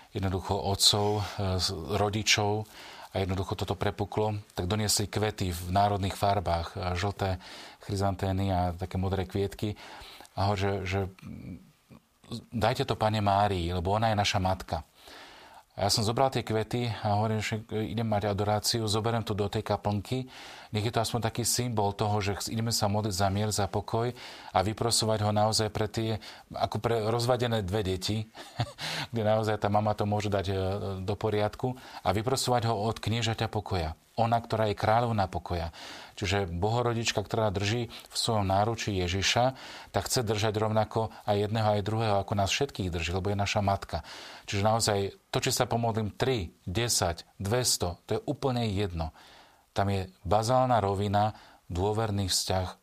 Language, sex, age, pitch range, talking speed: Slovak, male, 40-59, 95-110 Hz, 155 wpm